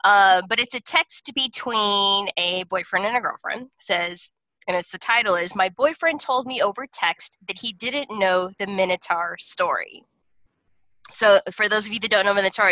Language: English